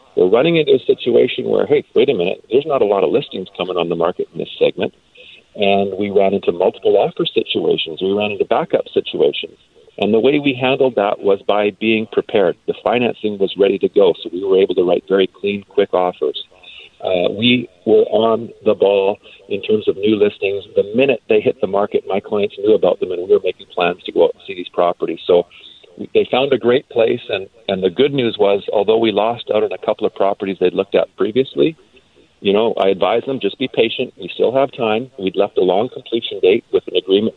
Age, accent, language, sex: 40-59, American, English, male